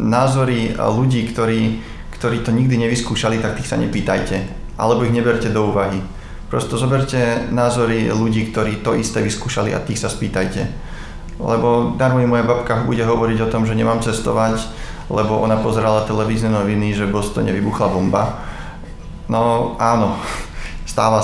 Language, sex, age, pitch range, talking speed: Slovak, male, 20-39, 105-115 Hz, 150 wpm